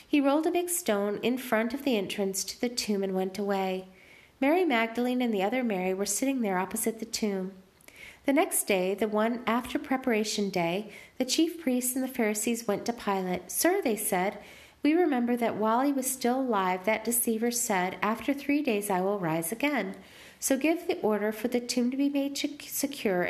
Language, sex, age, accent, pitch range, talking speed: English, female, 40-59, American, 200-260 Hz, 200 wpm